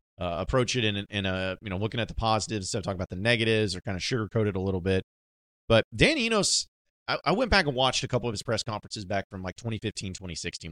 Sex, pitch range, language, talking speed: male, 90-120 Hz, English, 250 wpm